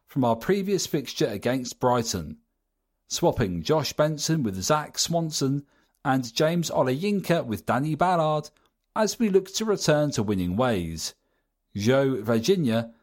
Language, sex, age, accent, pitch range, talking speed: English, male, 40-59, British, 125-180 Hz, 130 wpm